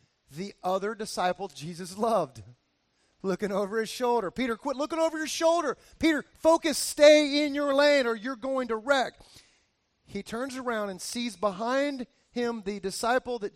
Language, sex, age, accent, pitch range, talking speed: English, male, 30-49, American, 200-280 Hz, 160 wpm